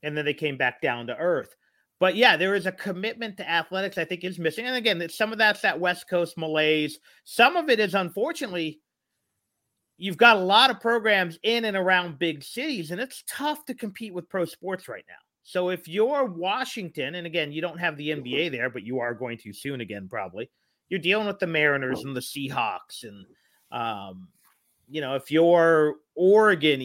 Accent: American